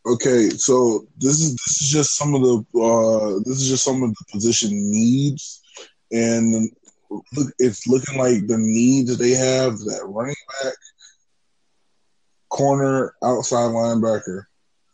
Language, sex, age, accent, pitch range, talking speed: English, male, 20-39, American, 115-140 Hz, 135 wpm